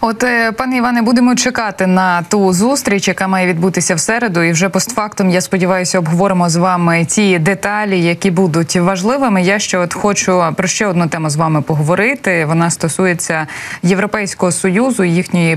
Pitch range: 165-200 Hz